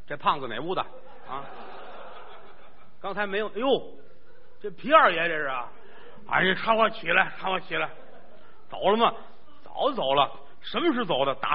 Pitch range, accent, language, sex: 135-210 Hz, native, Chinese, male